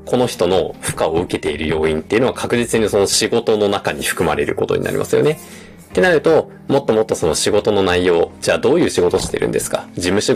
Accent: native